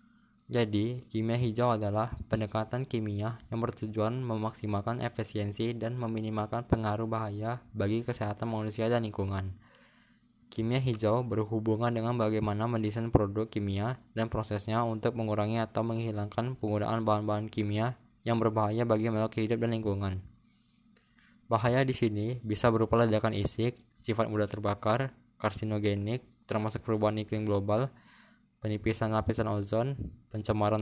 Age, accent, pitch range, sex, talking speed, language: 10-29, native, 110-120 Hz, male, 120 wpm, Indonesian